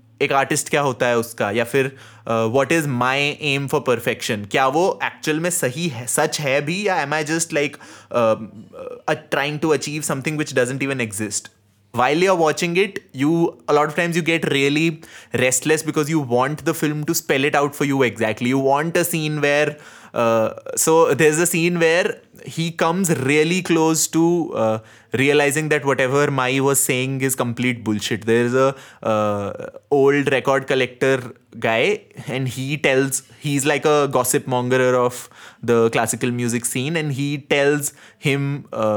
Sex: male